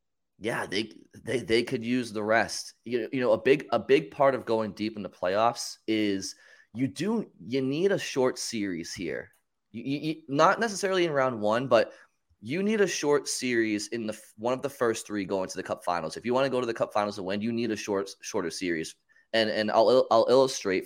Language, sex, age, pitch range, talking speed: English, male, 20-39, 100-130 Hz, 220 wpm